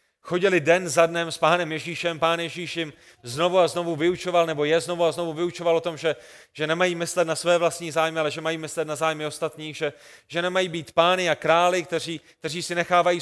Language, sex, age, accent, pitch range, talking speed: Czech, male, 30-49, native, 165-190 Hz, 215 wpm